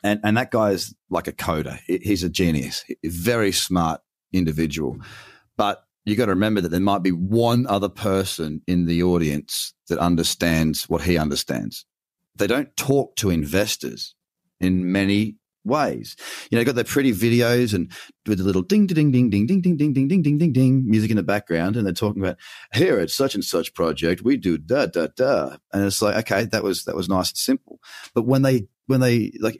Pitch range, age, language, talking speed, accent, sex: 95-125 Hz, 30-49, English, 205 wpm, Australian, male